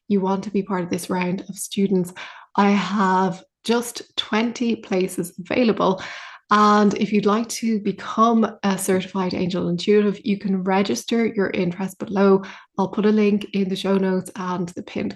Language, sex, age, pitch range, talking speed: English, female, 20-39, 185-210 Hz, 170 wpm